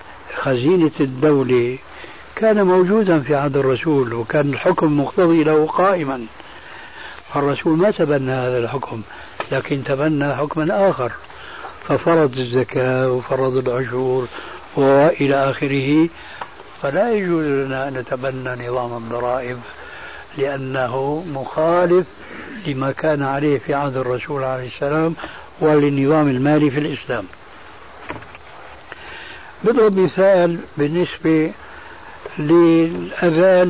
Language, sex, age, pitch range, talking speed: Arabic, male, 60-79, 135-175 Hz, 95 wpm